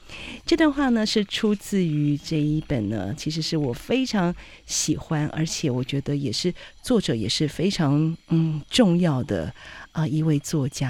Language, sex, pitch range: Chinese, female, 150-185 Hz